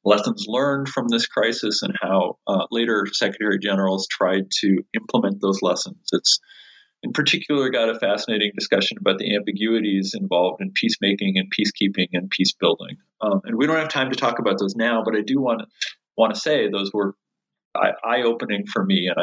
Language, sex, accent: English, male, American